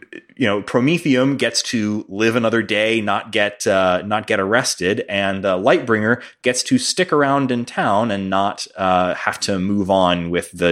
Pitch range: 100-130 Hz